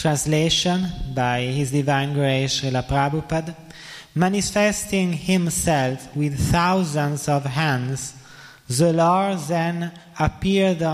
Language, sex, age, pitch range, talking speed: Italian, male, 20-39, 130-165 Hz, 95 wpm